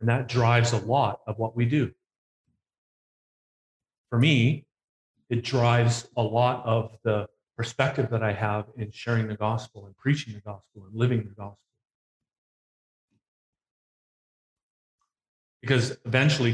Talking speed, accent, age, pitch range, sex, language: 125 wpm, American, 40-59, 110-125 Hz, male, English